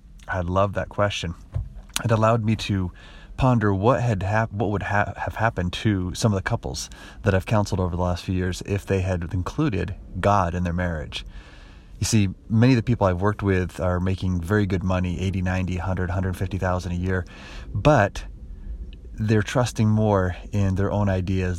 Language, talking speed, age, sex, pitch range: English, 185 wpm, 30-49, male, 90-105 Hz